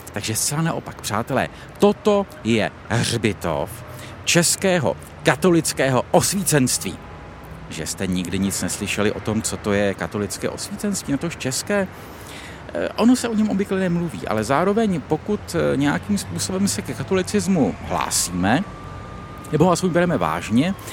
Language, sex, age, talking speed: Czech, male, 50-69, 130 wpm